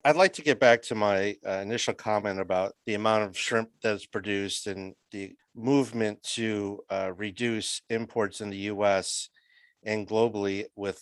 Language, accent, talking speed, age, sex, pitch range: English, American, 165 wpm, 50-69, male, 100-125 Hz